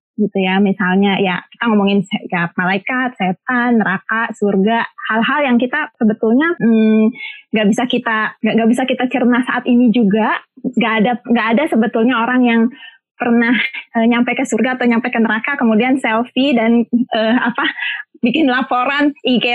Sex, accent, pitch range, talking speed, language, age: female, native, 215-260 Hz, 155 wpm, Indonesian, 20-39